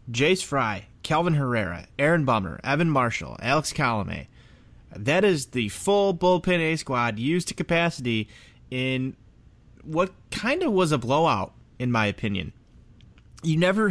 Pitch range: 115-150 Hz